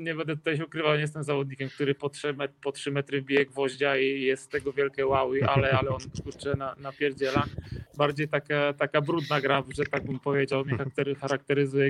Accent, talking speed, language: native, 180 wpm, Polish